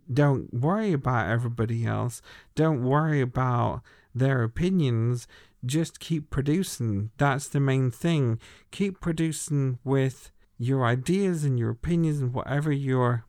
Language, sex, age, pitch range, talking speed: English, male, 40-59, 115-145 Hz, 125 wpm